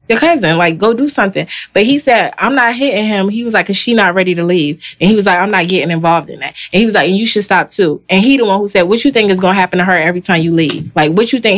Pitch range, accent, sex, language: 165-205 Hz, American, female, English